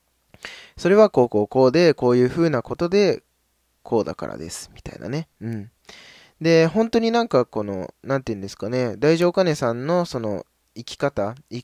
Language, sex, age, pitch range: Japanese, male, 20-39, 100-140 Hz